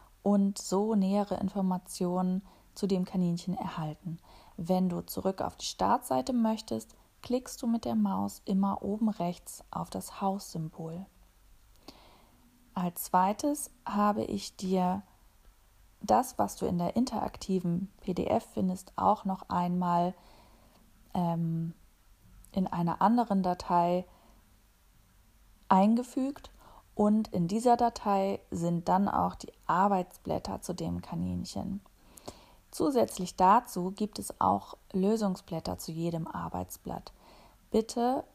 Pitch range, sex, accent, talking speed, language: 170-200 Hz, female, German, 110 wpm, German